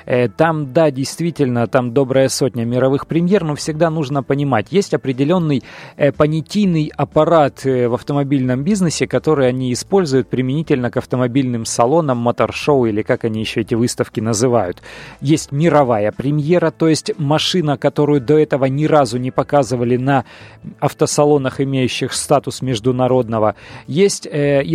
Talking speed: 130 wpm